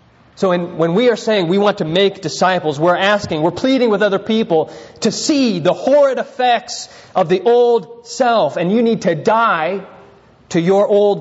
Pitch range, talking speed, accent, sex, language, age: 130-195 Hz, 180 wpm, American, male, English, 30-49